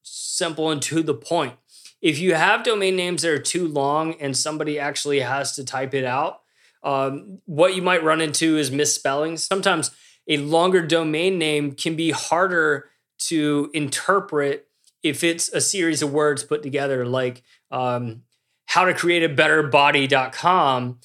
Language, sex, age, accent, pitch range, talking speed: English, male, 20-39, American, 140-165 Hz, 160 wpm